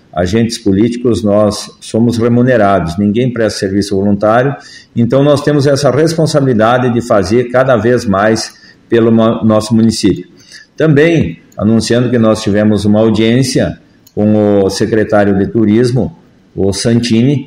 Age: 50-69